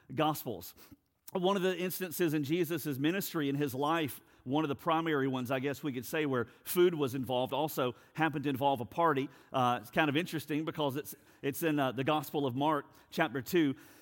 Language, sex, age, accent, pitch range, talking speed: English, male, 50-69, American, 130-165 Hz, 200 wpm